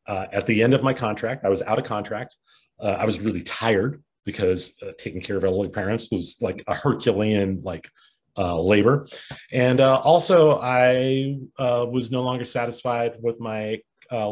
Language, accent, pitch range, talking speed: English, American, 100-125 Hz, 180 wpm